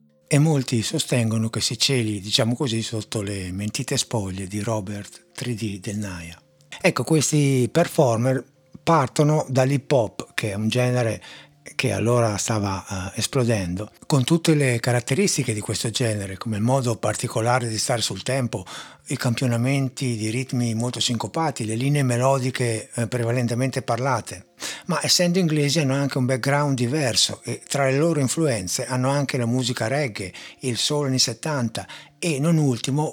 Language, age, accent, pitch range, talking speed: Italian, 60-79, native, 115-145 Hz, 150 wpm